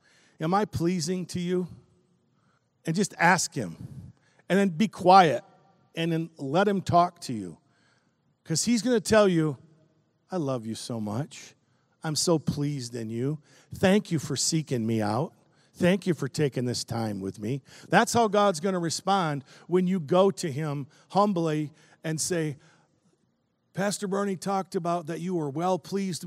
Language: English